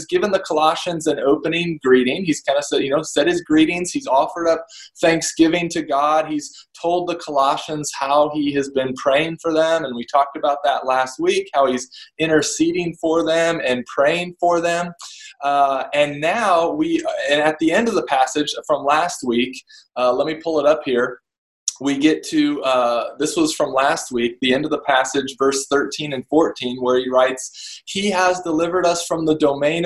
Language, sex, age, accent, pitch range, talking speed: English, male, 20-39, American, 145-180 Hz, 195 wpm